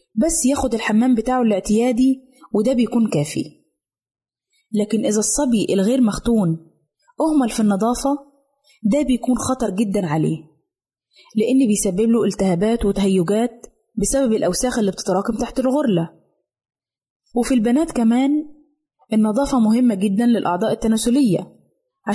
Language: Arabic